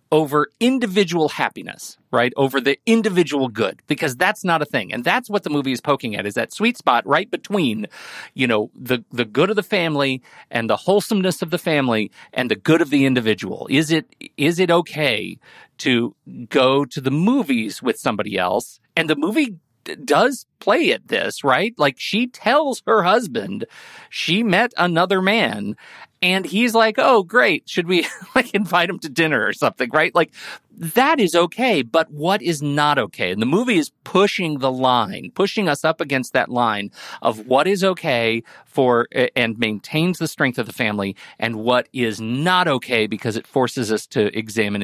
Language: English